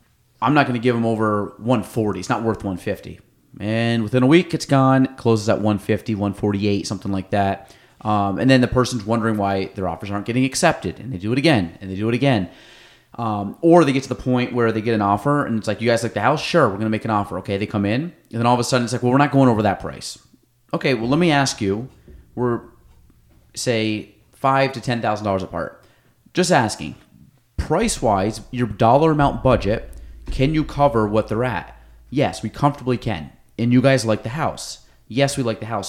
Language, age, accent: English, 30-49, American